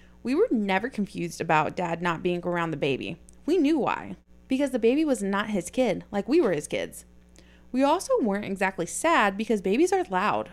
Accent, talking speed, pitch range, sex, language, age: American, 200 wpm, 180-260 Hz, female, English, 20-39